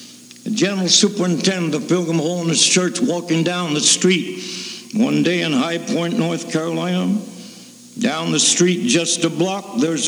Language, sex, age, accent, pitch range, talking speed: English, male, 60-79, American, 170-215 Hz, 150 wpm